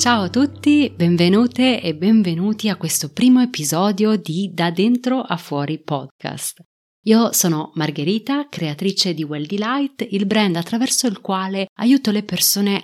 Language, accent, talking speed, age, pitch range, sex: Italian, native, 145 wpm, 30-49, 160-220 Hz, female